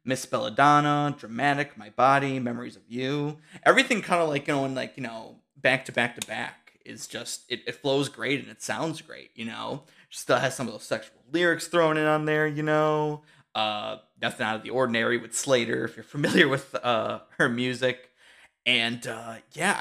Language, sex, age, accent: English, male, 20-39, American